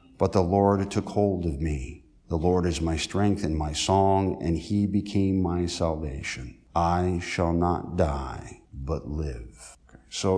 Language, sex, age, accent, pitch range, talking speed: English, male, 50-69, American, 80-105 Hz, 155 wpm